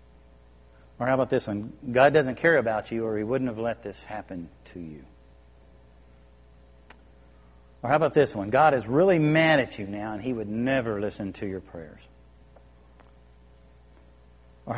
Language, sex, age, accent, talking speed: English, male, 50-69, American, 160 wpm